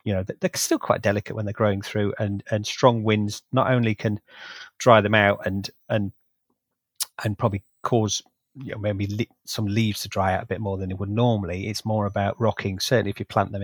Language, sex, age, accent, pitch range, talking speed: English, male, 30-49, British, 100-110 Hz, 215 wpm